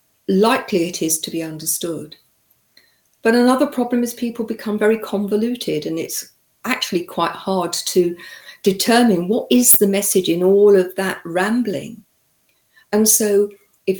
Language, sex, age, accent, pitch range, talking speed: English, female, 50-69, British, 175-225 Hz, 140 wpm